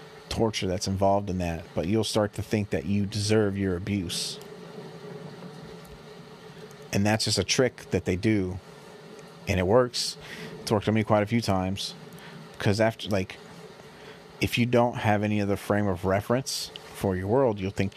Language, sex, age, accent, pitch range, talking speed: English, male, 30-49, American, 100-140 Hz, 170 wpm